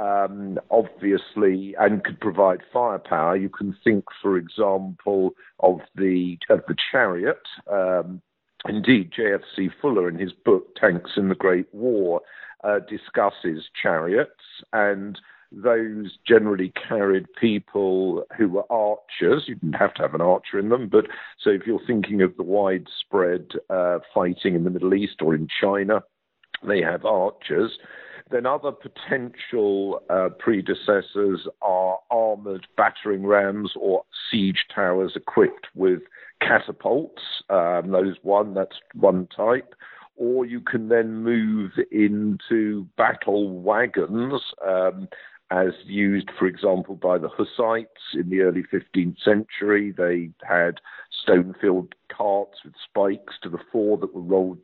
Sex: male